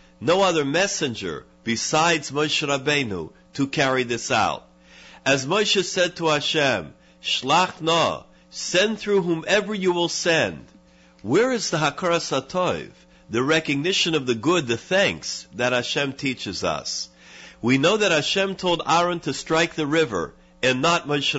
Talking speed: 145 wpm